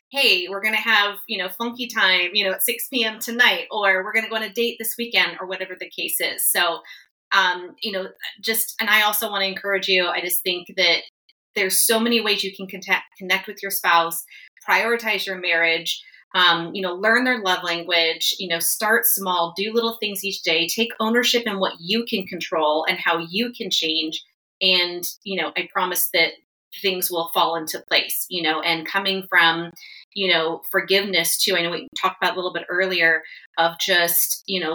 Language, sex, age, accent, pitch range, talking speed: English, female, 30-49, American, 170-205 Hz, 205 wpm